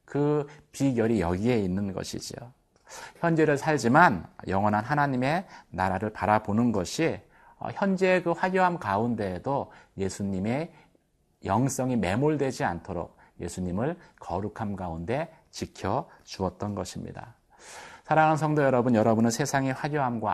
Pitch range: 95-150 Hz